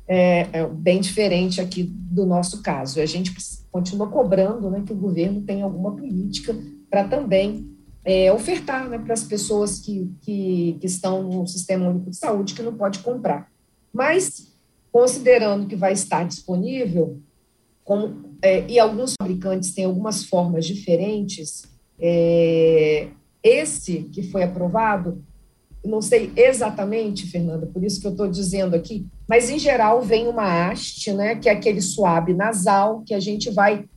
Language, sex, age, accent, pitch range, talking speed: Portuguese, female, 40-59, Brazilian, 185-235 Hz, 145 wpm